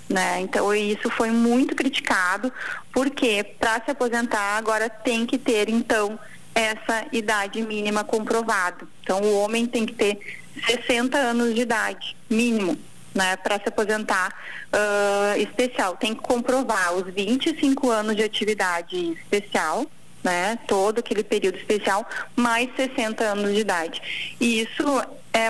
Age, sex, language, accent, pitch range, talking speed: 20-39, female, Portuguese, Brazilian, 200-235 Hz, 135 wpm